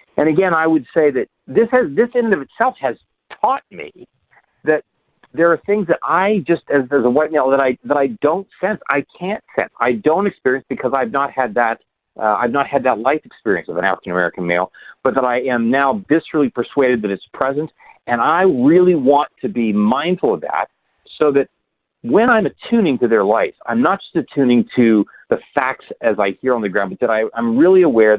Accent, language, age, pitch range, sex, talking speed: American, English, 50-69, 120-165 Hz, male, 220 wpm